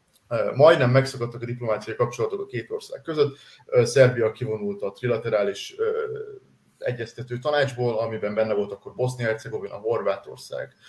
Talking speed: 120 wpm